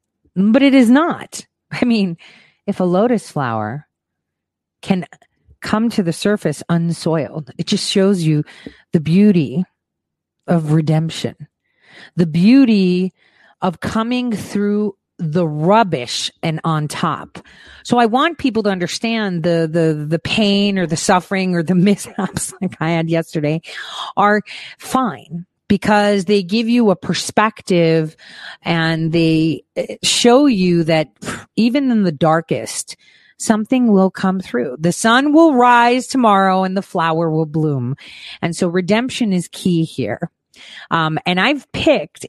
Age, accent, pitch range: 40-59, American, 155-210 Hz